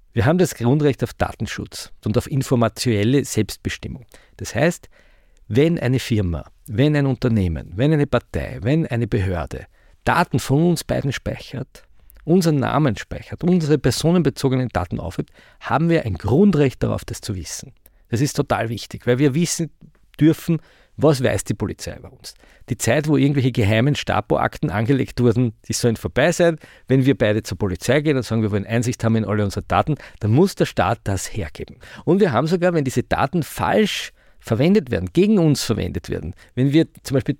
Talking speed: 180 wpm